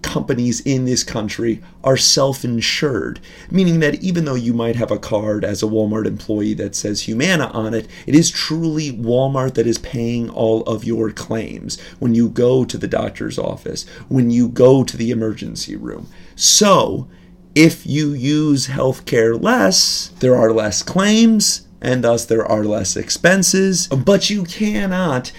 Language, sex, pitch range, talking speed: English, male, 115-170 Hz, 160 wpm